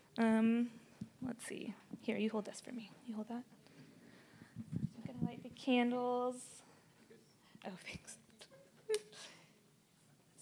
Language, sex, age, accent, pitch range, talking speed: English, female, 10-29, American, 220-280 Hz, 115 wpm